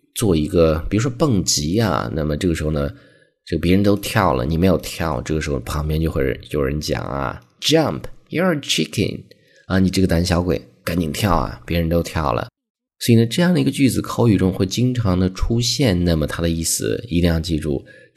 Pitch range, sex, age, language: 80-110 Hz, male, 20-39, Chinese